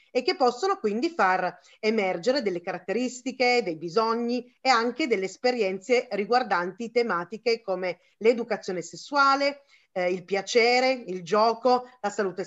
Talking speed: 125 wpm